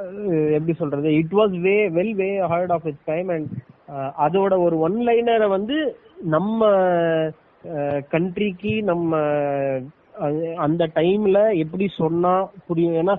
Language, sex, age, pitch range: Tamil, male, 30-49, 145-175 Hz